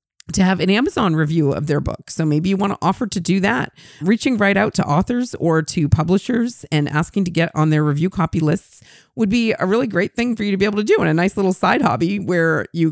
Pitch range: 150-195 Hz